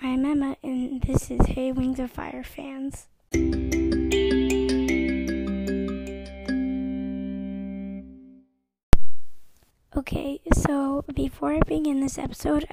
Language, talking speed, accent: English, 80 wpm, American